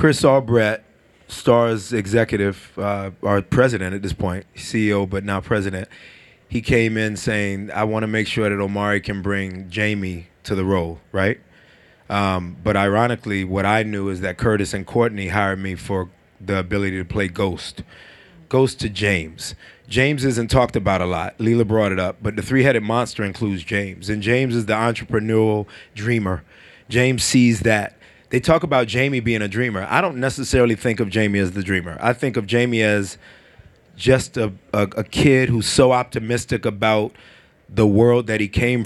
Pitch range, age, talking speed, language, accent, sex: 100-120 Hz, 30-49, 175 wpm, English, American, male